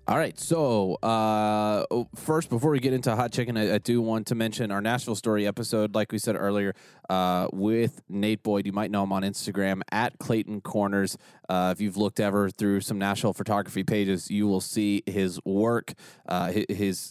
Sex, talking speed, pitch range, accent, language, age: male, 195 wpm, 100-110 Hz, American, English, 20-39